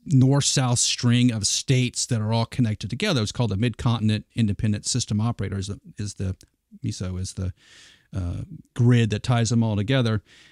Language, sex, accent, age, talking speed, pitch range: English, male, American, 40-59, 170 wpm, 115-140 Hz